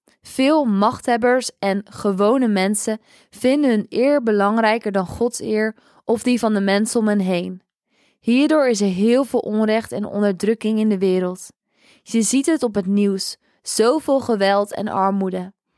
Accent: Dutch